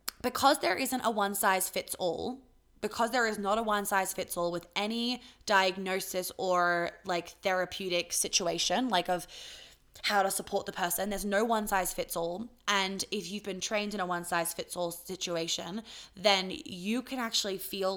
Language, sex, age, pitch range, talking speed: English, female, 20-39, 175-215 Hz, 180 wpm